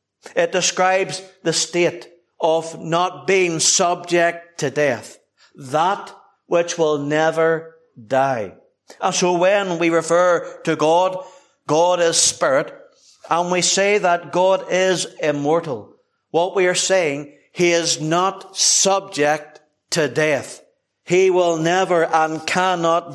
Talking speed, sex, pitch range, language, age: 120 wpm, male, 160-185 Hz, English, 60-79